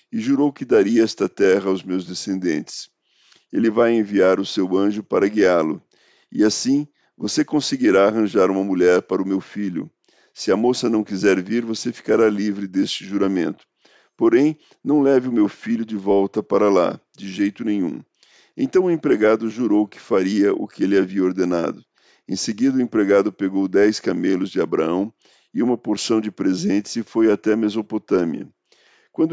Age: 50-69